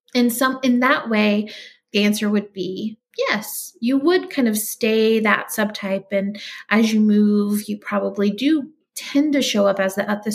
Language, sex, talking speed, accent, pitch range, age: English, female, 180 wpm, American, 200-250 Hz, 30-49